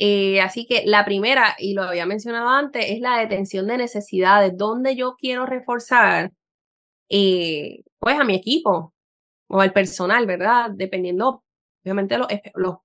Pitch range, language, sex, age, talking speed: 185-220 Hz, Spanish, female, 20-39, 150 wpm